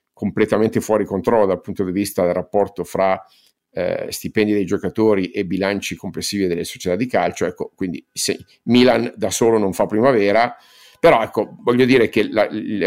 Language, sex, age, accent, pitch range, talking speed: Italian, male, 50-69, native, 95-110 Hz, 175 wpm